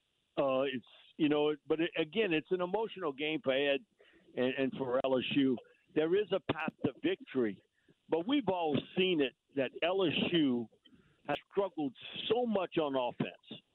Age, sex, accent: 60-79, male, American